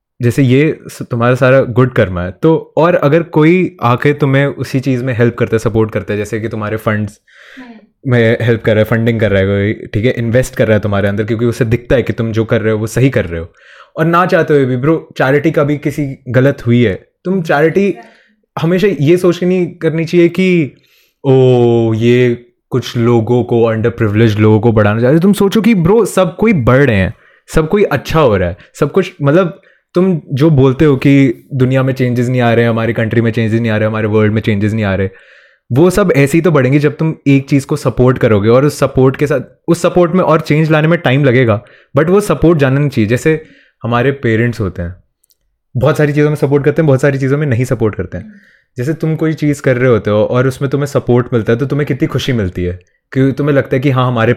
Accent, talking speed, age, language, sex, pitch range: native, 240 wpm, 20-39, Hindi, male, 115-155 Hz